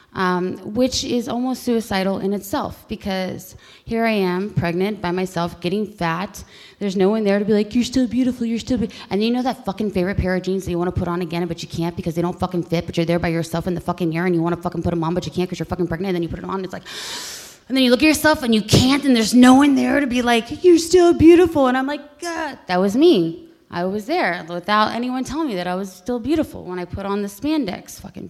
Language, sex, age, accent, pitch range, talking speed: English, female, 20-39, American, 175-230 Hz, 280 wpm